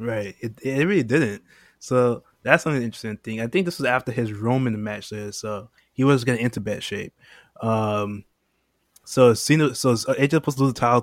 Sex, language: male, English